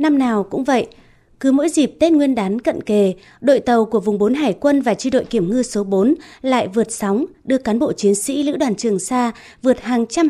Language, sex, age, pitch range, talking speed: Vietnamese, female, 20-39, 205-275 Hz, 240 wpm